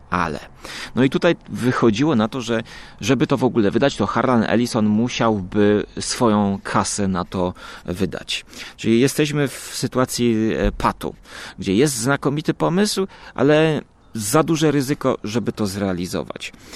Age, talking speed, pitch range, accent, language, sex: 30-49, 135 wpm, 100-125 Hz, native, Polish, male